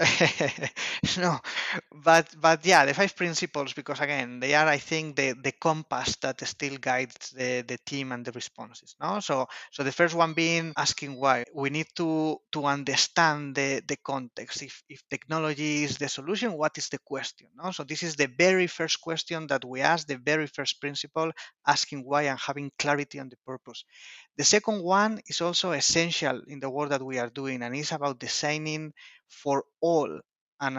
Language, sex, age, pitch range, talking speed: English, male, 30-49, 135-165 Hz, 185 wpm